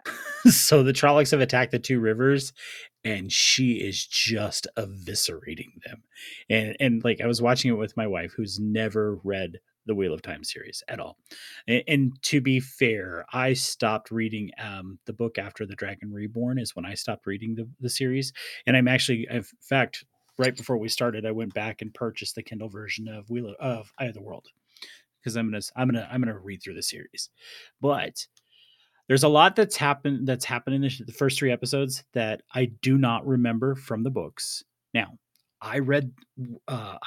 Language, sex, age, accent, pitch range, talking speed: English, male, 30-49, American, 110-135 Hz, 195 wpm